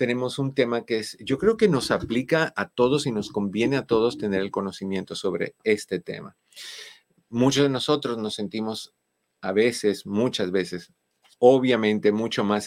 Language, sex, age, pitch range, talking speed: Spanish, male, 50-69, 100-125 Hz, 165 wpm